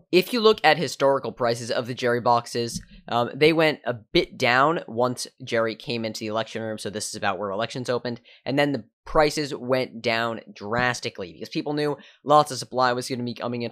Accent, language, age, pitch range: American, English, 10-29, 110-140 Hz